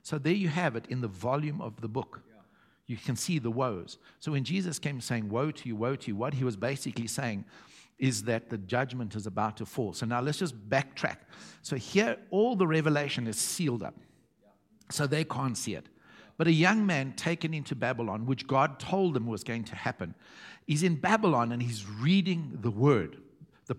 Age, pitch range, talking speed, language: 60-79, 115-155 Hz, 205 wpm, English